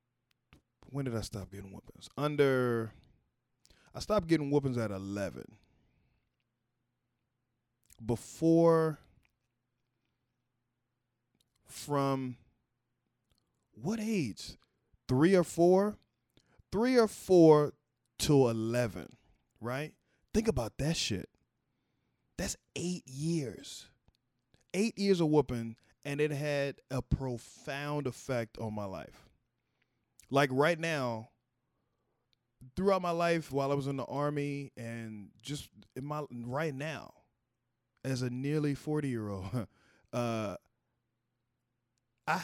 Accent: American